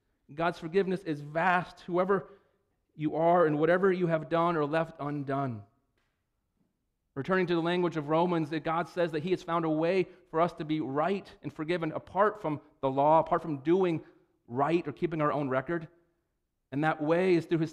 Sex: male